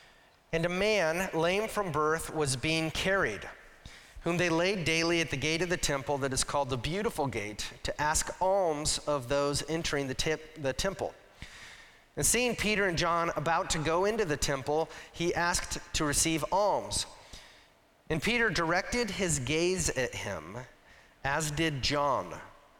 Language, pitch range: English, 145-185 Hz